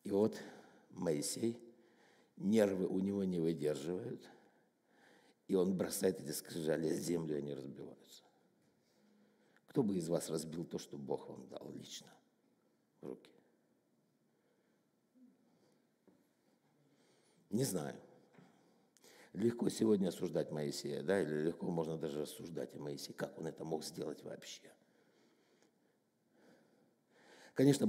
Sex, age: male, 60-79